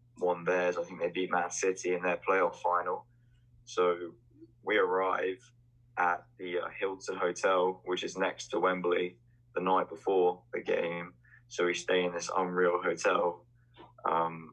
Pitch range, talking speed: 90-120 Hz, 155 wpm